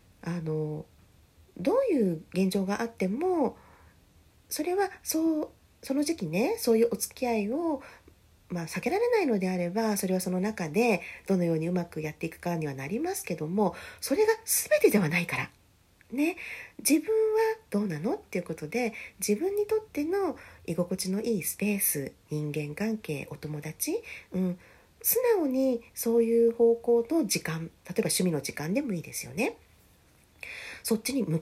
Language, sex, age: Japanese, female, 40-59